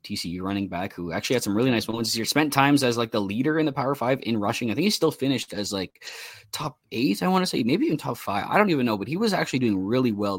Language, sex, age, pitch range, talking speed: English, male, 20-39, 105-130 Hz, 295 wpm